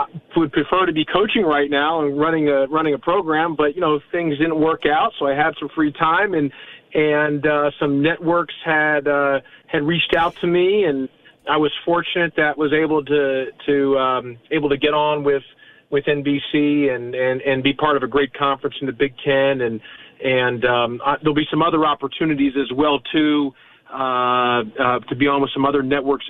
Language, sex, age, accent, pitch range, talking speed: English, male, 40-59, American, 140-170 Hz, 205 wpm